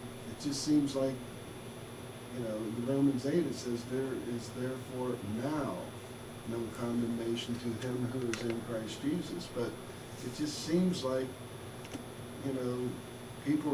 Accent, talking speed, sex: American, 140 wpm, male